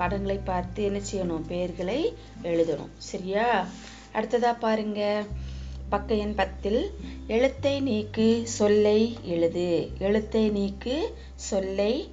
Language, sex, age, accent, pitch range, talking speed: Tamil, female, 20-39, native, 165-220 Hz, 95 wpm